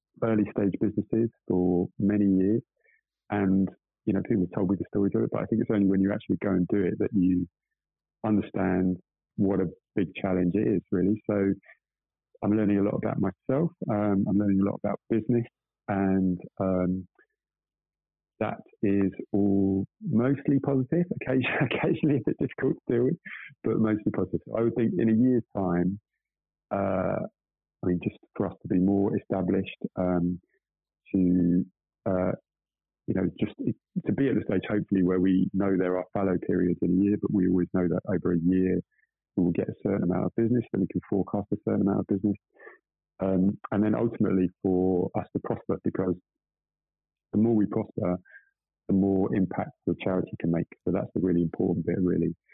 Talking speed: 185 wpm